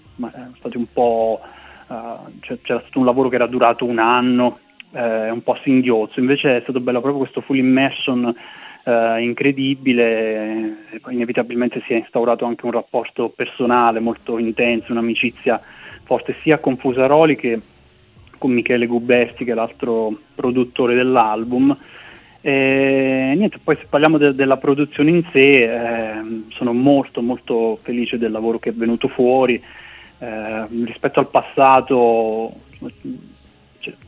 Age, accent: 20-39, native